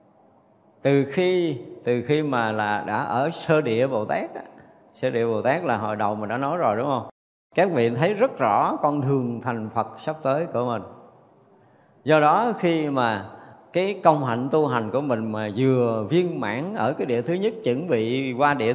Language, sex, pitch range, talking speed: Vietnamese, male, 115-155 Hz, 200 wpm